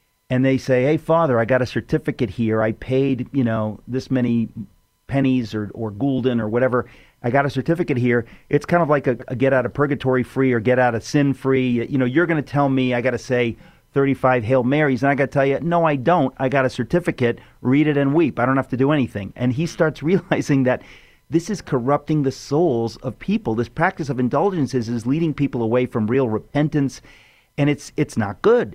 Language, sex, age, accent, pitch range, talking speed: English, male, 40-59, American, 120-145 Hz, 220 wpm